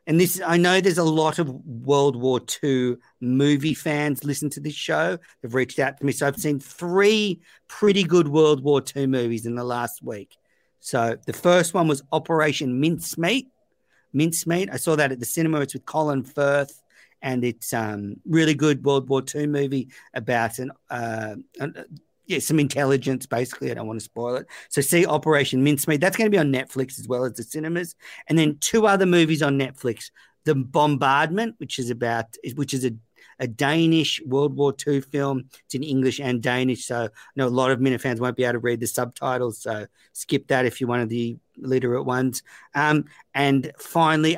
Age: 50-69